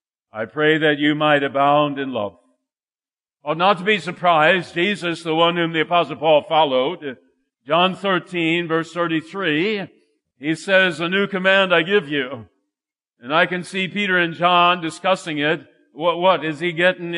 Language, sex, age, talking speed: English, male, 50-69, 165 wpm